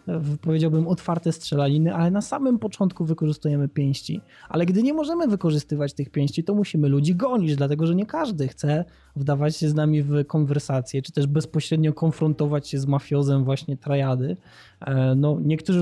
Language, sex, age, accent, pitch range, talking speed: Polish, male, 20-39, native, 150-185 Hz, 160 wpm